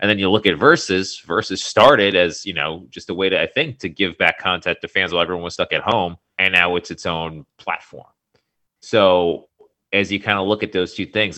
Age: 30-49